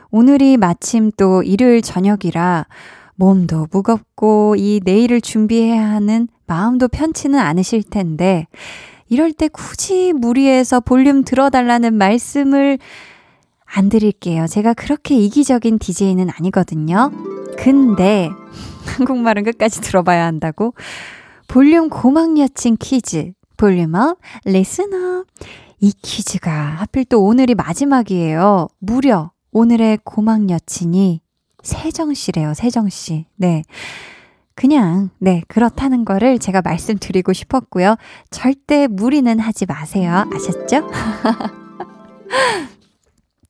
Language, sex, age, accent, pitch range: Korean, female, 20-39, native, 190-265 Hz